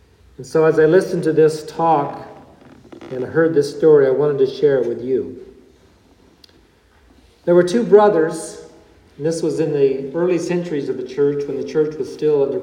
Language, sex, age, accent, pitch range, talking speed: English, male, 50-69, American, 145-195 Hz, 185 wpm